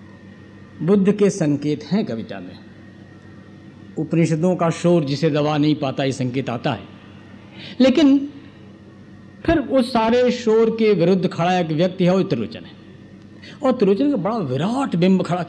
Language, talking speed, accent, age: Hindi, 145 wpm, native, 50-69